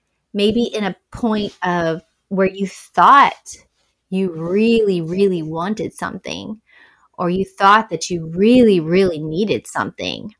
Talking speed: 125 wpm